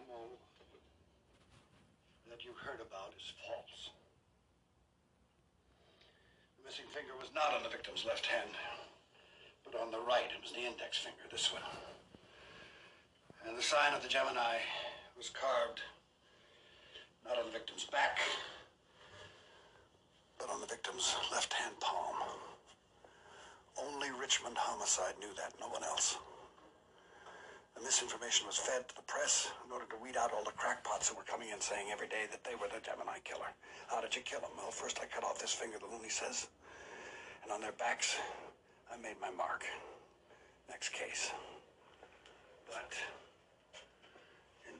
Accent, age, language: American, 60-79, English